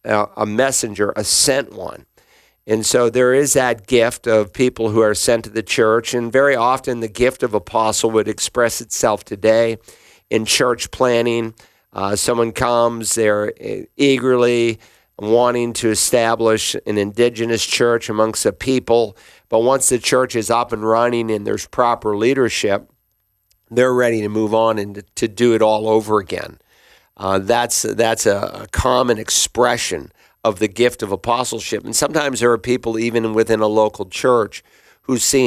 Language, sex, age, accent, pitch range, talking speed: English, male, 50-69, American, 105-120 Hz, 160 wpm